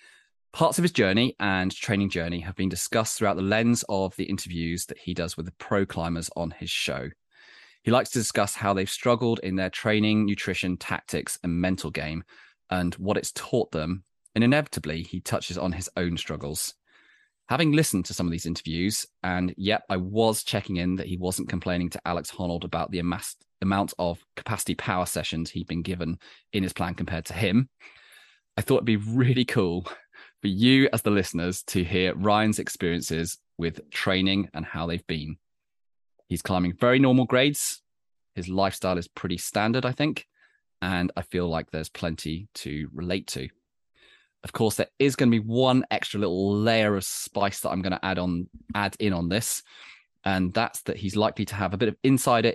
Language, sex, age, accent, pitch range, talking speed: English, male, 20-39, British, 85-105 Hz, 190 wpm